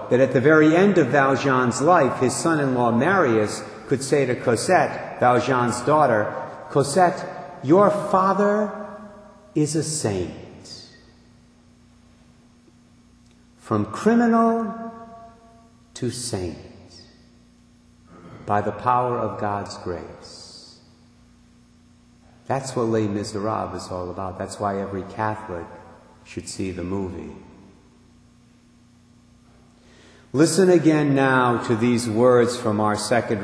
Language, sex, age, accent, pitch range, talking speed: English, male, 50-69, American, 105-145 Hz, 100 wpm